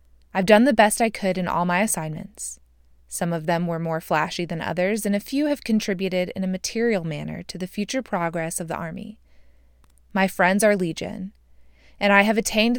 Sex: female